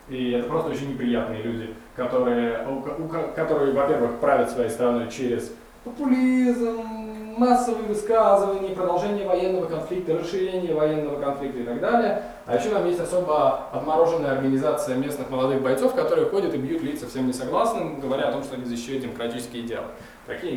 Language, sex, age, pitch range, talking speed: Russian, male, 20-39, 120-180 Hz, 150 wpm